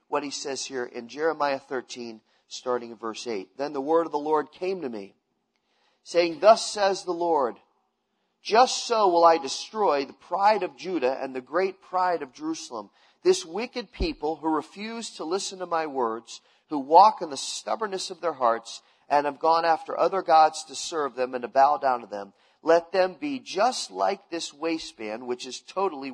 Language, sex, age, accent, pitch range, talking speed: English, male, 40-59, American, 135-200 Hz, 190 wpm